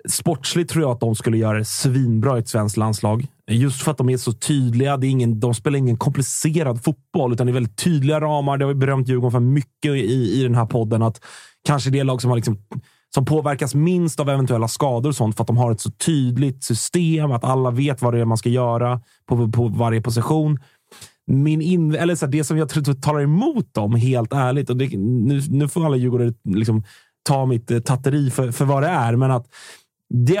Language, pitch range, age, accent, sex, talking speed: Swedish, 120-150 Hz, 30-49, native, male, 225 wpm